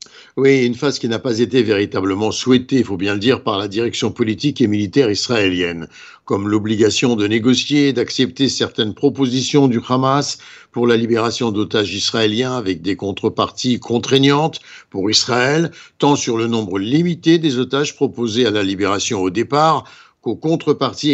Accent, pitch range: French, 115-140 Hz